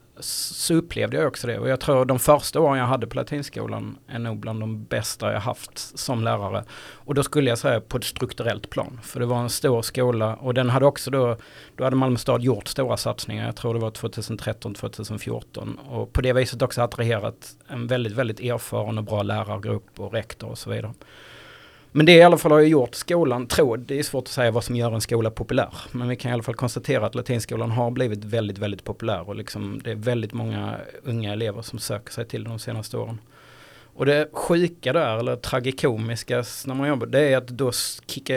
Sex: male